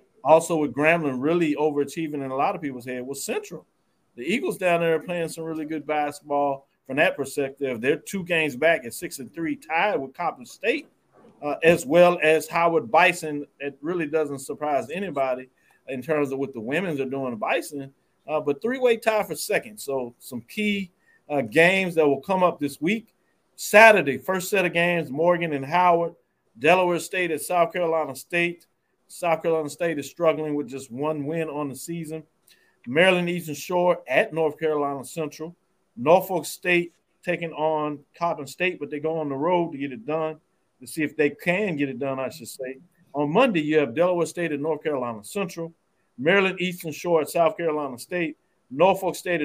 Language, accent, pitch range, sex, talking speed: English, American, 145-175 Hz, male, 190 wpm